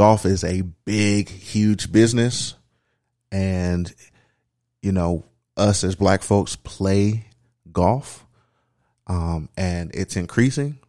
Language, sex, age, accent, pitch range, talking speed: English, male, 30-49, American, 90-110 Hz, 105 wpm